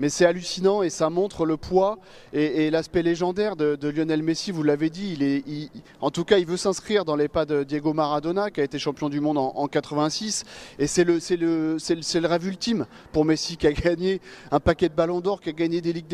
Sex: male